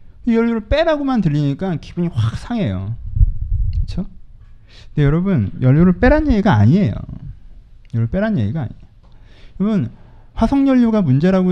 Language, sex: Korean, male